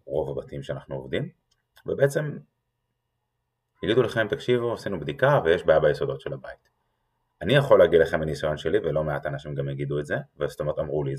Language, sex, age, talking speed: Hebrew, male, 30-49, 170 wpm